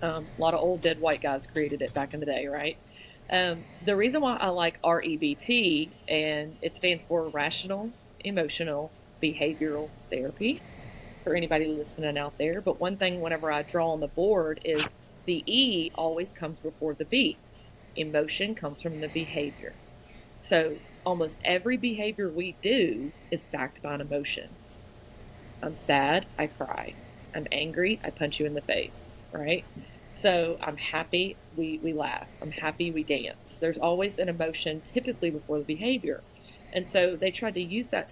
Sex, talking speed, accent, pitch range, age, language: female, 165 wpm, American, 150-180 Hz, 40-59, English